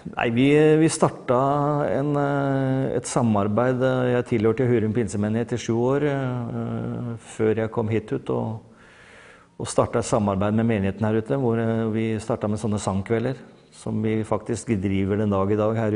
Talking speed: 160 wpm